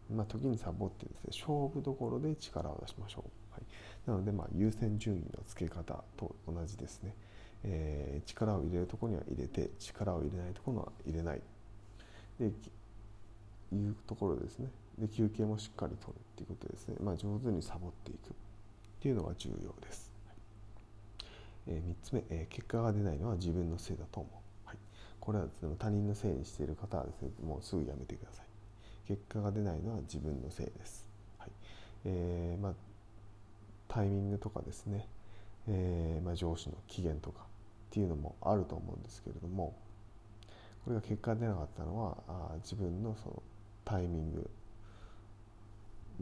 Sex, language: male, Japanese